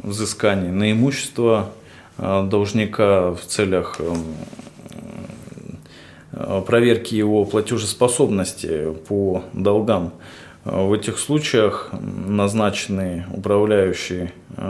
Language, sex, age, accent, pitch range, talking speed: Russian, male, 20-39, native, 95-115 Hz, 65 wpm